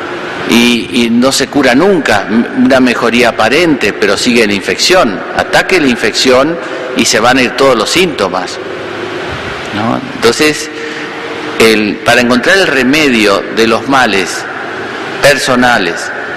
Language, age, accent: Spanish, 50-69, Argentinian